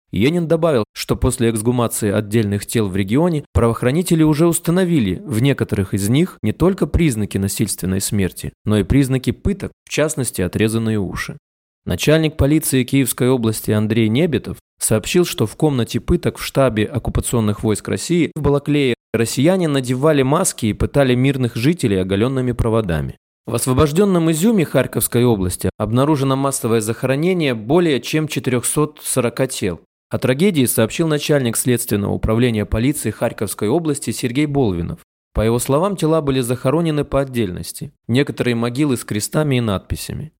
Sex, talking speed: male, 140 wpm